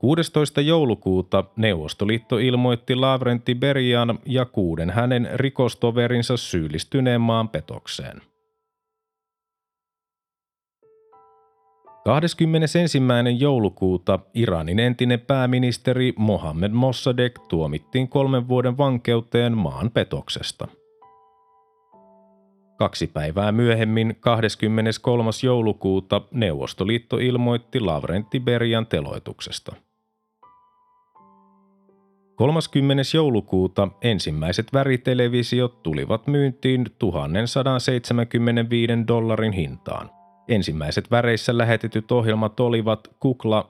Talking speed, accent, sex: 65 wpm, native, male